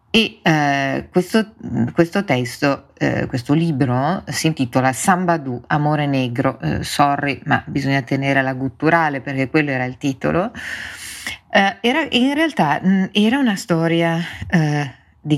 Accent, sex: native, female